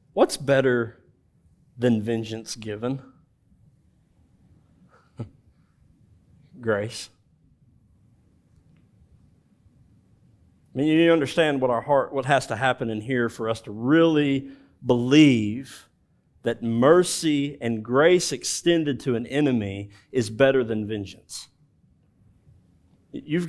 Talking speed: 95 wpm